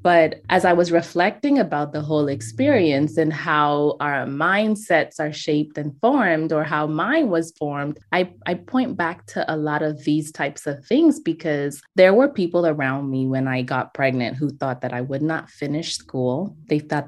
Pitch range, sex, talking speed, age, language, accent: 145-175 Hz, female, 190 wpm, 20-39, English, American